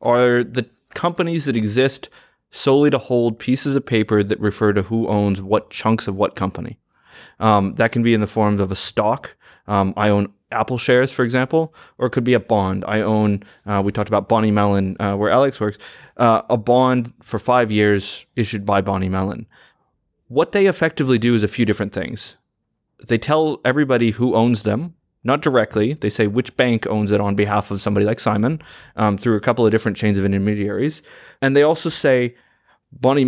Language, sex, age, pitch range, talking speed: English, male, 20-39, 105-125 Hz, 195 wpm